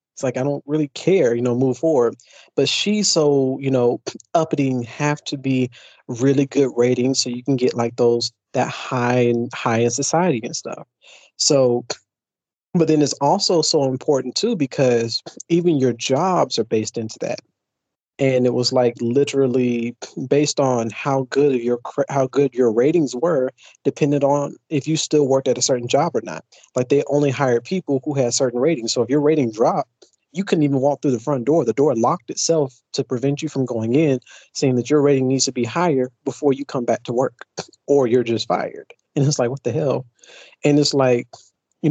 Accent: American